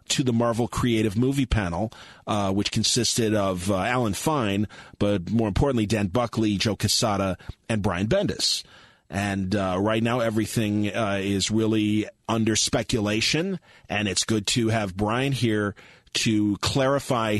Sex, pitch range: male, 105-125 Hz